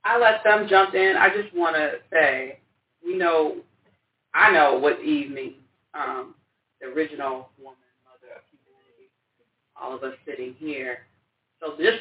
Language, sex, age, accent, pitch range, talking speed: English, female, 30-49, American, 155-265 Hz, 155 wpm